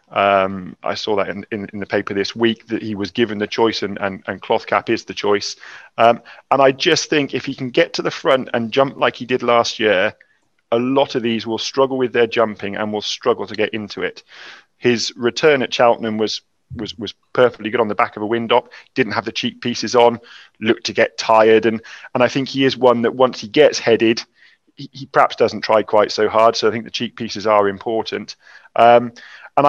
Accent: British